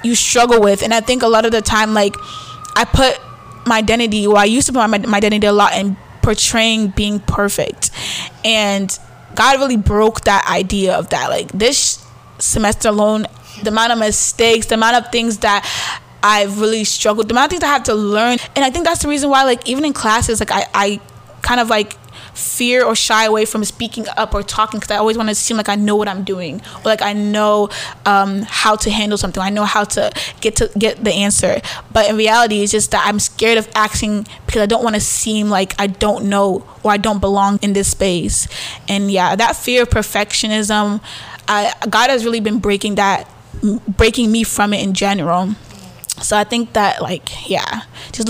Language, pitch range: English, 205-225 Hz